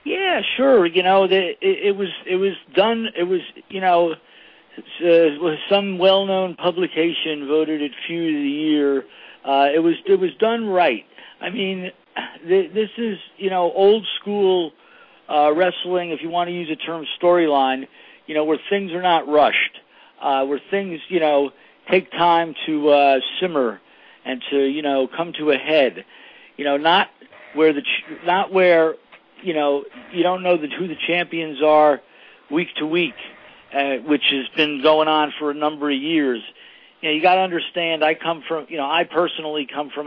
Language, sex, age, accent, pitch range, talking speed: English, male, 50-69, American, 145-180 Hz, 180 wpm